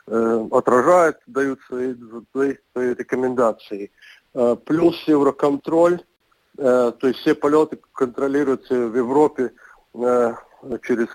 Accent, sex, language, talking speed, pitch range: native, male, Russian, 80 wpm, 115-140 Hz